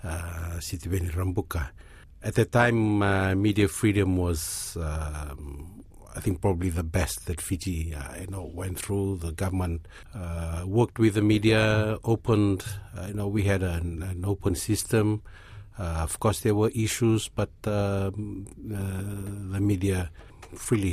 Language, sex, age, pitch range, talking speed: English, male, 50-69, 85-100 Hz, 145 wpm